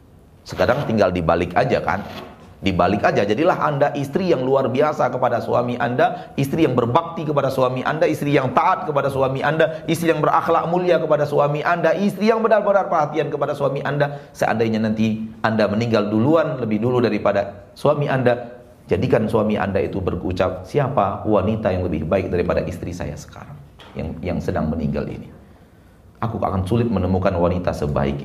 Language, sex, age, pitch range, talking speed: Indonesian, male, 40-59, 95-150 Hz, 165 wpm